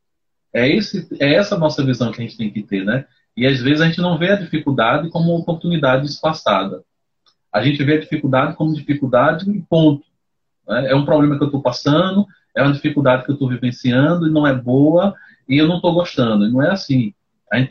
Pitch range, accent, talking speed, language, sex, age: 125-160 Hz, Brazilian, 215 wpm, Portuguese, male, 30-49